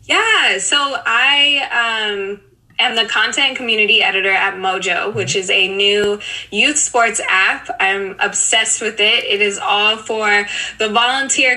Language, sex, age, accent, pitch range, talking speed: English, female, 10-29, American, 195-235 Hz, 145 wpm